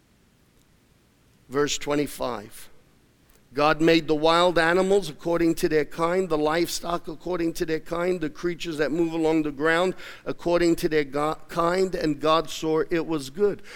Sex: male